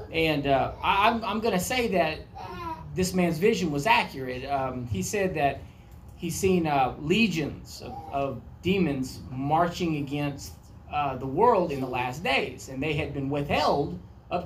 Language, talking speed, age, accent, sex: English, 160 wpm, 30-49, American, male